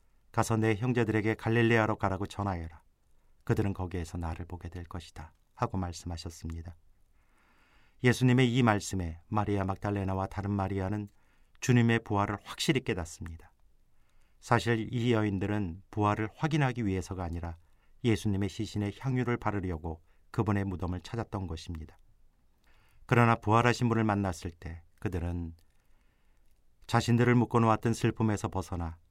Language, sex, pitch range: Korean, male, 85-110 Hz